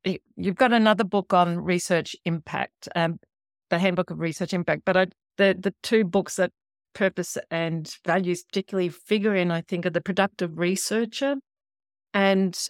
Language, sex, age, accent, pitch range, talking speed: English, female, 50-69, Australian, 165-210 Hz, 150 wpm